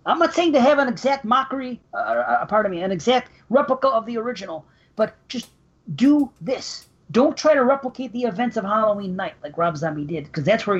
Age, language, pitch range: 40-59, English, 170-220 Hz